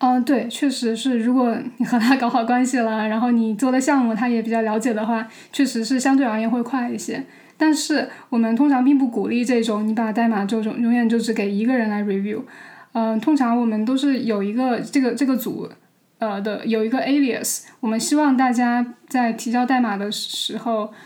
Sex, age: female, 10-29